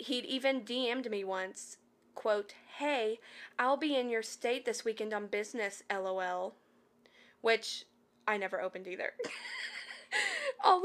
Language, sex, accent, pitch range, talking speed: English, female, American, 205-255 Hz, 125 wpm